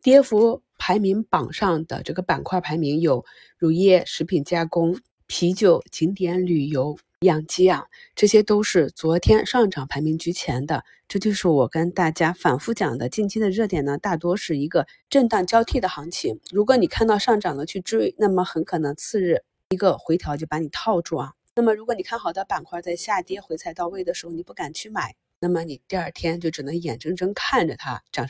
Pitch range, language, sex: 160-200 Hz, Chinese, female